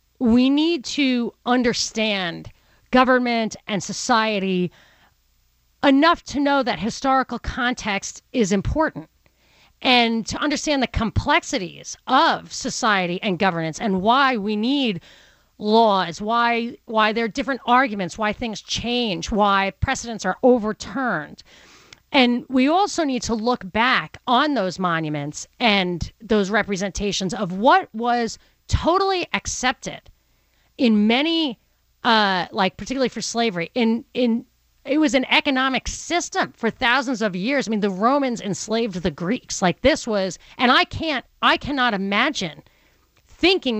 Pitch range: 205-265 Hz